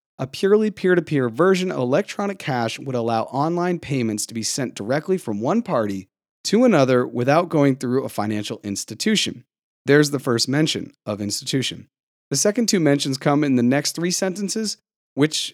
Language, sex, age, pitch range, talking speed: English, male, 30-49, 125-180 Hz, 165 wpm